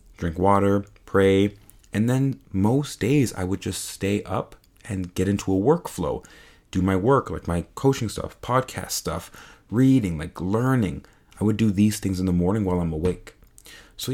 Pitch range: 90-110 Hz